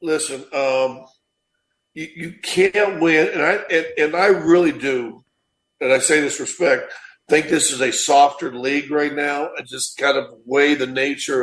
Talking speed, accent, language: 175 wpm, American, English